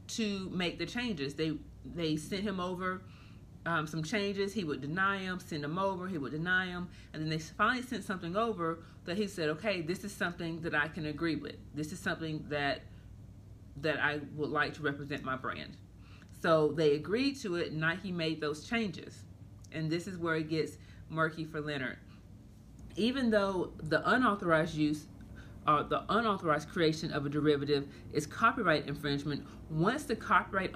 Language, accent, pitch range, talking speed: English, American, 150-185 Hz, 180 wpm